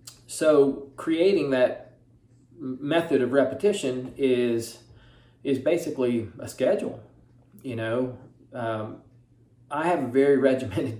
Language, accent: English, American